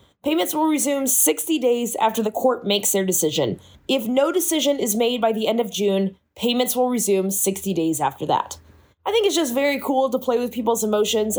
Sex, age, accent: female, 20-39, American